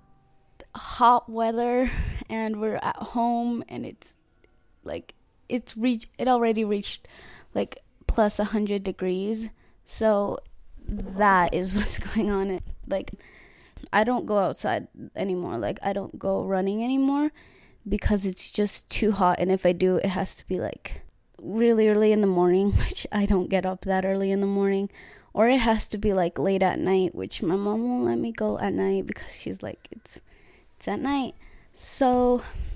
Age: 20-39